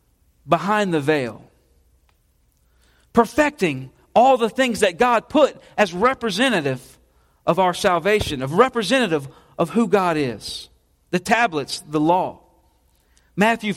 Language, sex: English, male